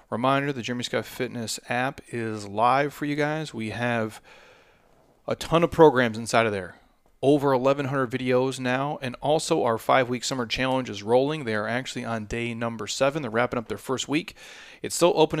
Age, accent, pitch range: 30-49, American, 115-140 Hz